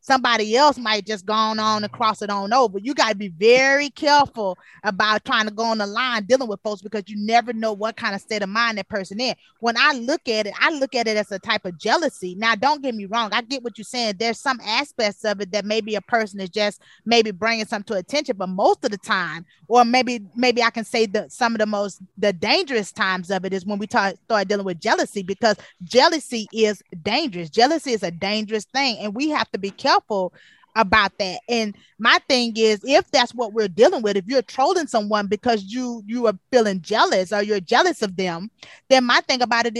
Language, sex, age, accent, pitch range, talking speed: English, female, 20-39, American, 205-250 Hz, 240 wpm